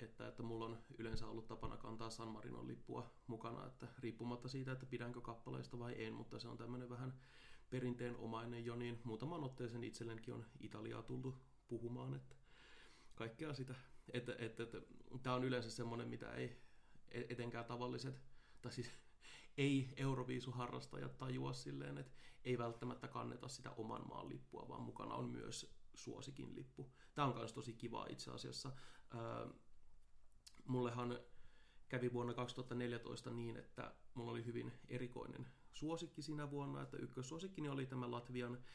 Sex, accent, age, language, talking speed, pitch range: male, native, 30-49, Finnish, 145 wpm, 115-125 Hz